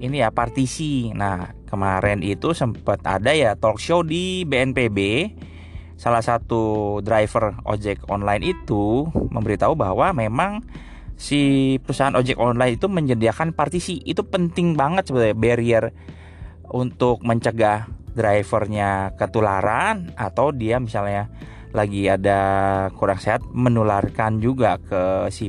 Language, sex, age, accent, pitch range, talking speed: Indonesian, male, 20-39, native, 100-135 Hz, 115 wpm